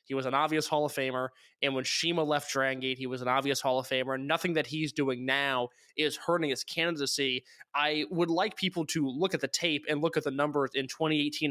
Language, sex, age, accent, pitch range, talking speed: English, male, 20-39, American, 140-175 Hz, 235 wpm